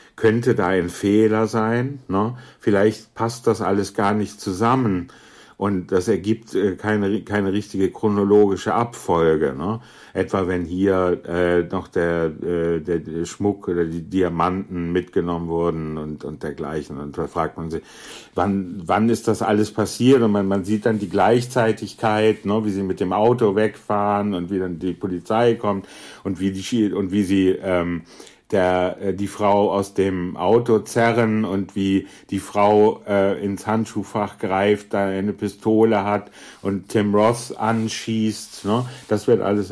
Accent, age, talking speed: German, 60-79, 160 wpm